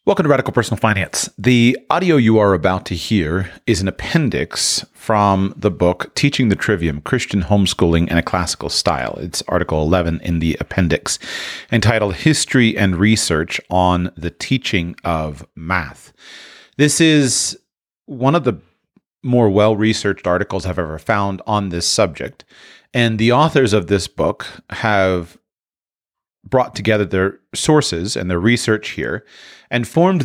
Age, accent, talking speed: 40-59, American, 145 wpm